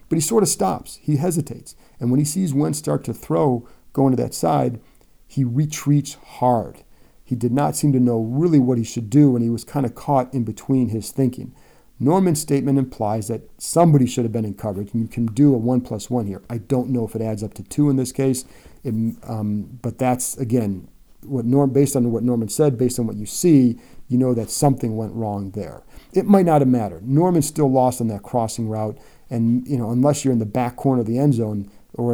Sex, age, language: male, 40-59, English